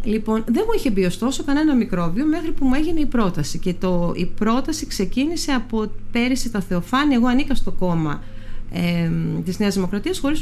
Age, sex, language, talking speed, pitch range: 40-59, female, Greek, 180 wpm, 165-235 Hz